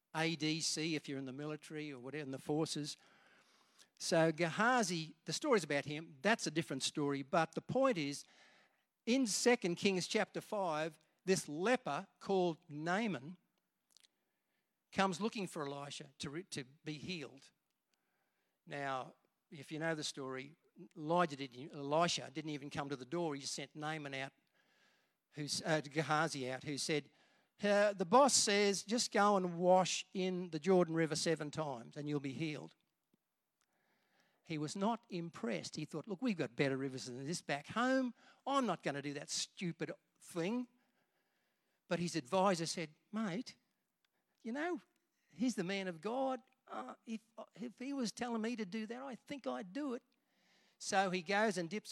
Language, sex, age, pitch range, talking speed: English, male, 50-69, 150-205 Hz, 165 wpm